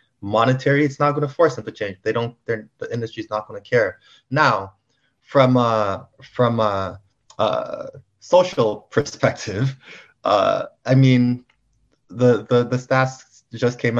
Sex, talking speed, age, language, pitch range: male, 140 wpm, 20-39, English, 105-125 Hz